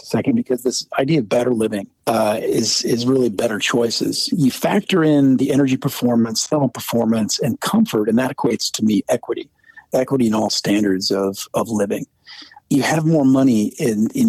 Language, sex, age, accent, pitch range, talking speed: English, male, 50-69, American, 110-155 Hz, 175 wpm